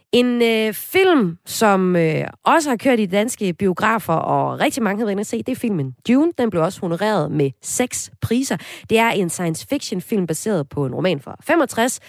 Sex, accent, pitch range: female, native, 165-230 Hz